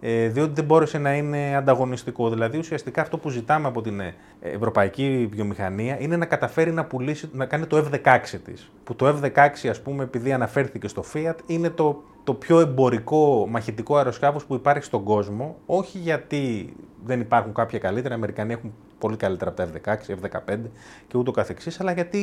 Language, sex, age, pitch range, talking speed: Greek, male, 30-49, 105-150 Hz, 175 wpm